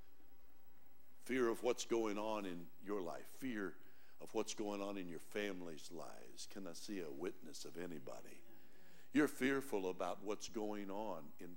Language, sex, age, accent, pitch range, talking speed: English, male, 60-79, American, 120-195 Hz, 160 wpm